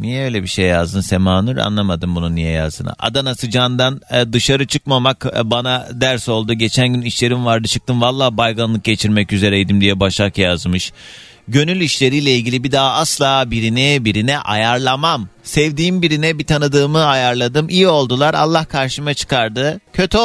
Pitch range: 110-150 Hz